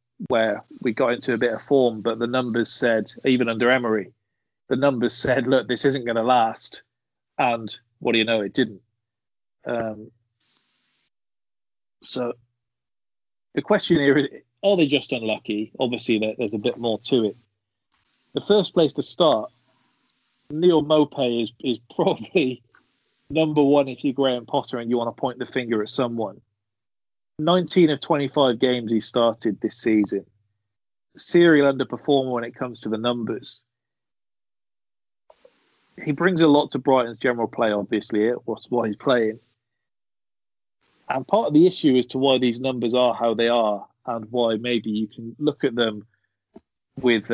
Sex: male